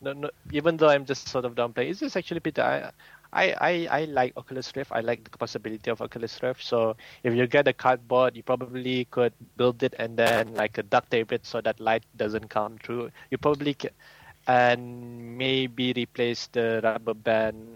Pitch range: 110-125 Hz